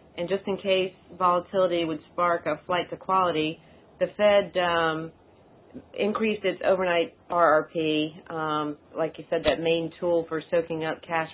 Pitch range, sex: 155-175 Hz, female